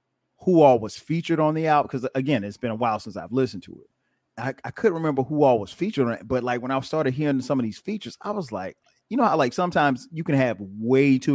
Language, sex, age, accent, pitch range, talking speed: English, male, 30-49, American, 110-135 Hz, 270 wpm